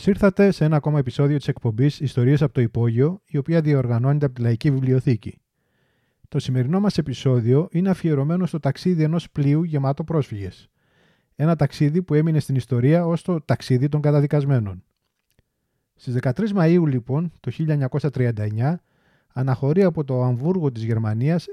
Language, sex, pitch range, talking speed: Greek, male, 130-170 Hz, 150 wpm